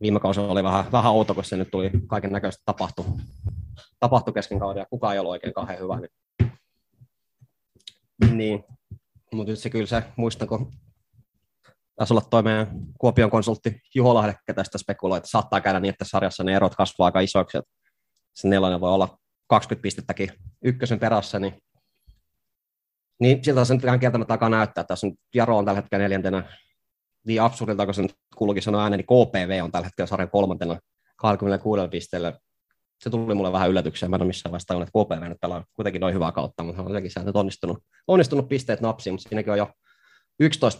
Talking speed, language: 170 wpm, Finnish